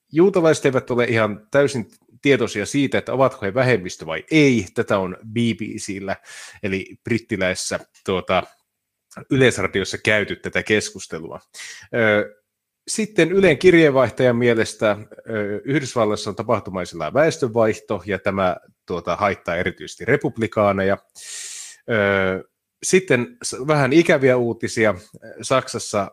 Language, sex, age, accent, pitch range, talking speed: Finnish, male, 30-49, native, 100-125 Hz, 95 wpm